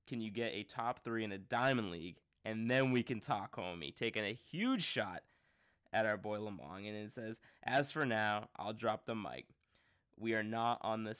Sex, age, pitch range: male, 20-39, 105-120 Hz